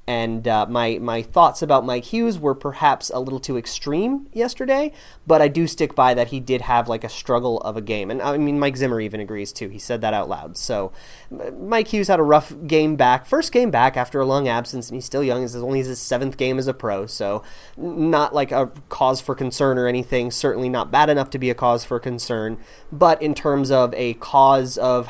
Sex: male